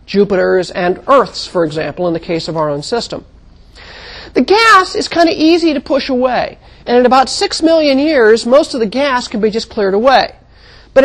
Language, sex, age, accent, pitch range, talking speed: English, male, 40-59, American, 190-270 Hz, 200 wpm